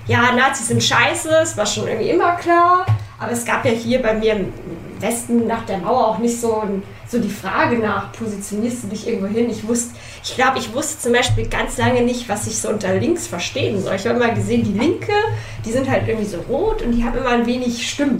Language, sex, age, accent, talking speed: German, female, 10-29, German, 235 wpm